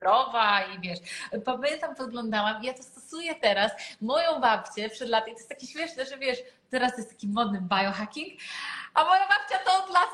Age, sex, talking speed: 30-49, female, 180 wpm